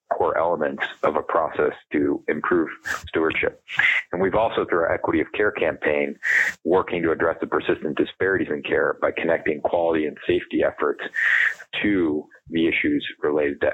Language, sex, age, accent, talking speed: English, male, 30-49, American, 155 wpm